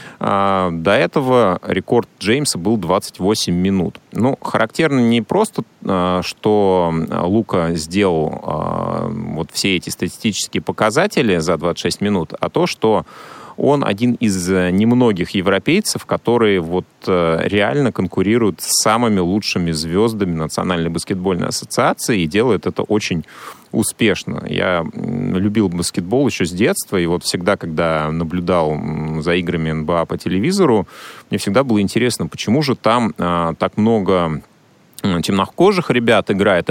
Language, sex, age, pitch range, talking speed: Russian, male, 30-49, 85-110 Hz, 120 wpm